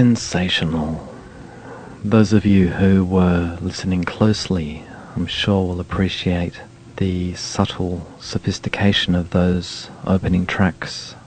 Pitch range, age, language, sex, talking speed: 90-110 Hz, 40-59, English, male, 100 wpm